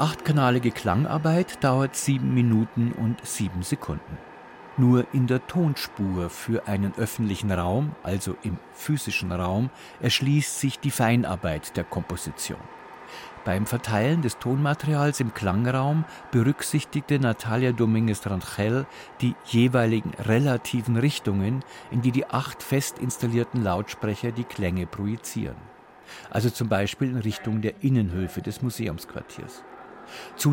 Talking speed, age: 115 wpm, 50-69